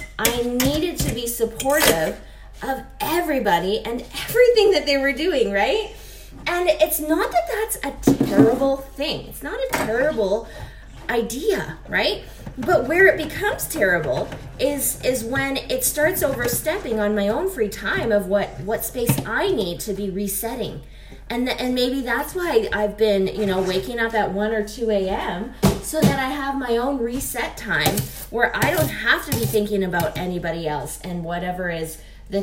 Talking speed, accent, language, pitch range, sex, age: 170 wpm, American, English, 205-270 Hz, female, 20-39